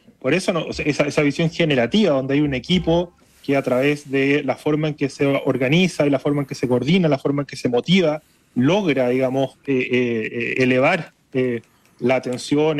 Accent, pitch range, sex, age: Argentinian, 130-165 Hz, male, 30-49